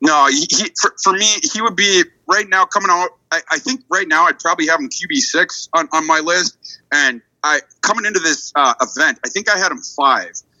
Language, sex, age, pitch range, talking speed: English, male, 30-49, 135-230 Hz, 225 wpm